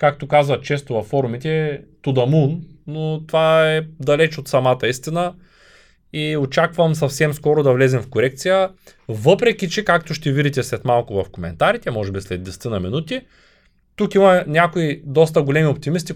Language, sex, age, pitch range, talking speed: Bulgarian, male, 20-39, 135-185 Hz, 155 wpm